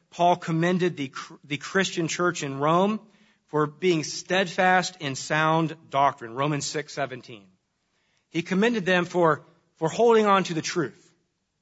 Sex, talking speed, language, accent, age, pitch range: male, 140 wpm, English, American, 40-59, 150-180 Hz